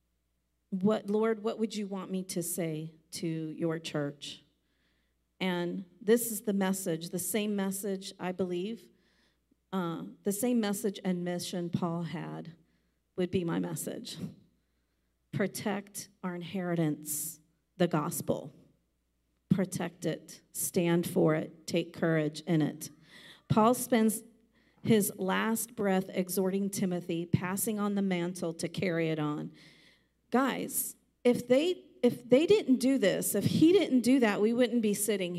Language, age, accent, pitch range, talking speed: English, 40-59, American, 160-215 Hz, 135 wpm